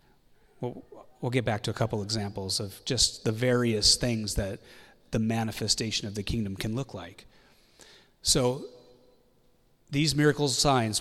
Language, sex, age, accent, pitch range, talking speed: English, male, 30-49, American, 105-130 Hz, 135 wpm